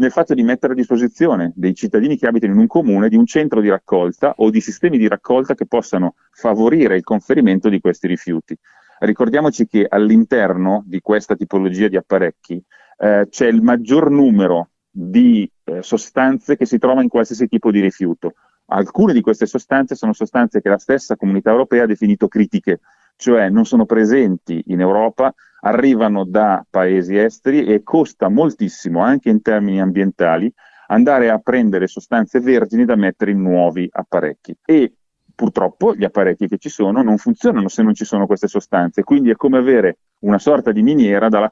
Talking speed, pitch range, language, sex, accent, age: 175 wpm, 95-130 Hz, Italian, male, native, 40-59